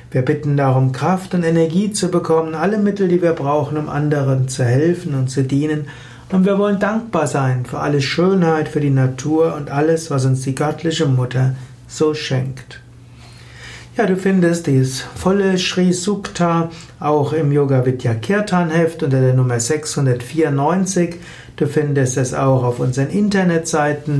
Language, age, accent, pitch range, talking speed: German, 60-79, German, 135-170 Hz, 150 wpm